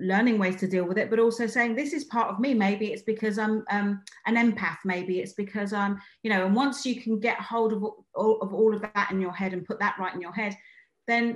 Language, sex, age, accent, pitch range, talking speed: English, female, 30-49, British, 175-220 Hz, 260 wpm